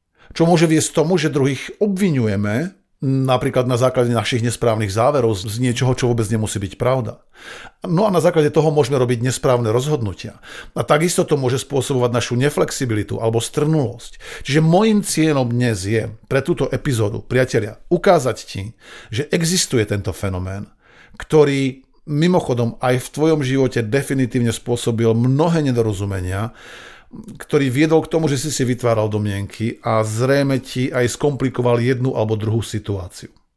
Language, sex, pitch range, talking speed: Slovak, male, 115-155 Hz, 145 wpm